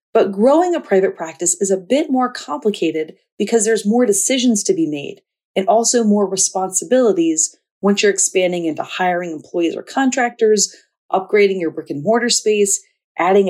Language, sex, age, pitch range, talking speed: English, female, 30-49, 175-235 Hz, 160 wpm